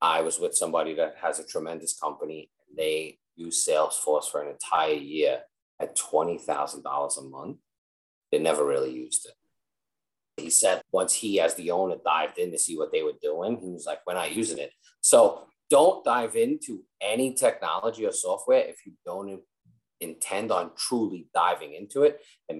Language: English